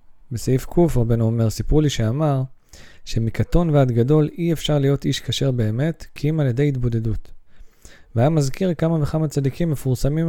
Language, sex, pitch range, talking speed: Hebrew, male, 115-155 Hz, 155 wpm